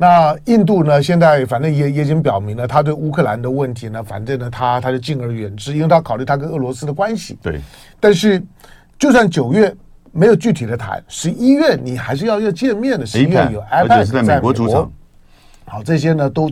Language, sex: Chinese, male